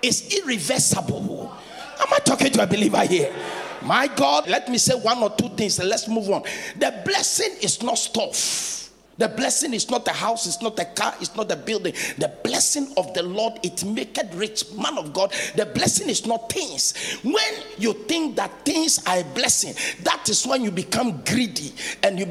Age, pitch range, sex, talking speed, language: 50-69, 205-275 Hz, male, 195 wpm, English